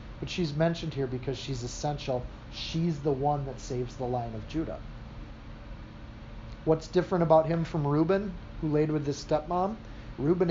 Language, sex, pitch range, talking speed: English, male, 125-160 Hz, 160 wpm